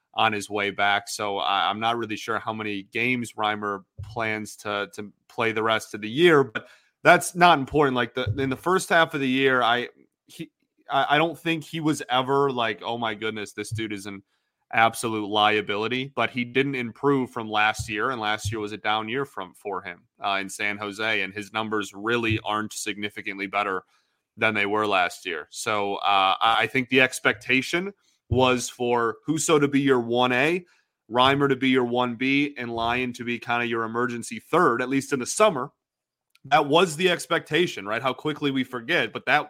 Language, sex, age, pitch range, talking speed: English, male, 30-49, 110-130 Hz, 195 wpm